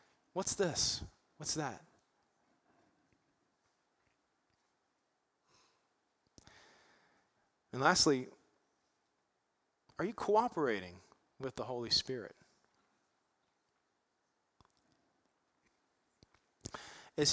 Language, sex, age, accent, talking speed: English, male, 40-59, American, 50 wpm